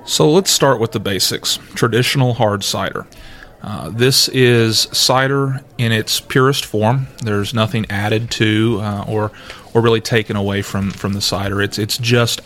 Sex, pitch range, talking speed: male, 105-120 Hz, 165 wpm